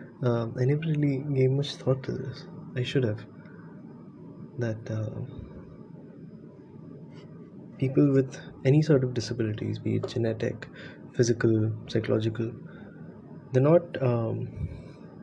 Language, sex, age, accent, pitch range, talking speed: English, male, 20-39, Indian, 115-140 Hz, 110 wpm